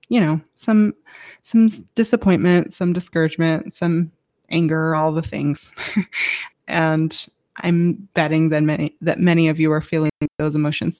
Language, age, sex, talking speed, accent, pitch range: English, 20-39, female, 135 wpm, American, 160-200 Hz